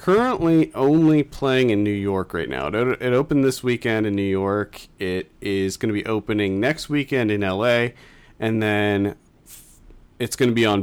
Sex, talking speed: male, 175 wpm